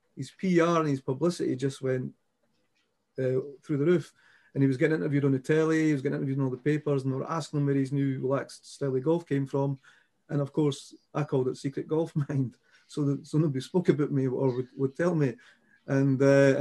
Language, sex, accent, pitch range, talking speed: English, male, British, 130-150 Hz, 230 wpm